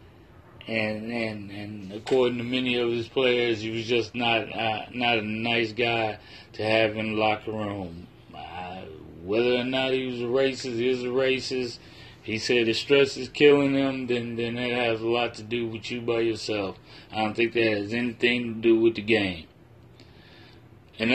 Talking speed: 190 wpm